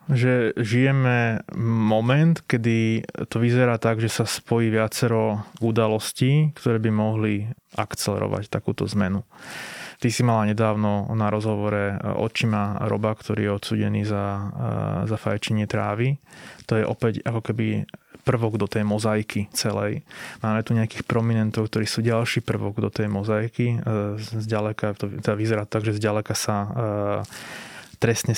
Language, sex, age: Slovak, male, 20-39